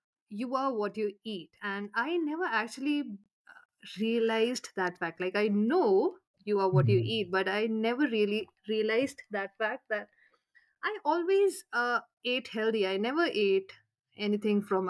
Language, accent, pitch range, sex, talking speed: English, Indian, 185-225 Hz, female, 155 wpm